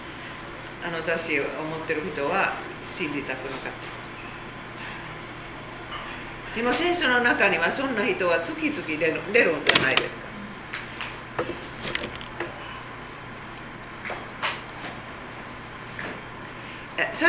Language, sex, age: Japanese, female, 40-59